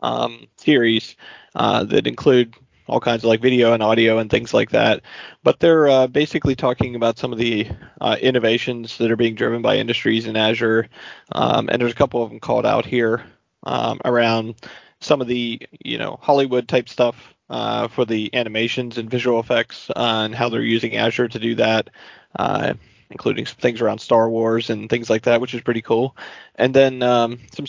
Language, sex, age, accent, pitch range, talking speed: English, male, 30-49, American, 115-125 Hz, 195 wpm